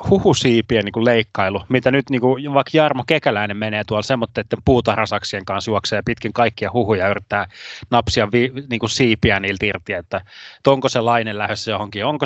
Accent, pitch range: native, 105-130 Hz